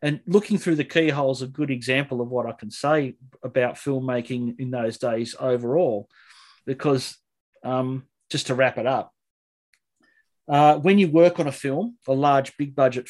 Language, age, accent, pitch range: English, 40-59, Australian, 130-170 Hz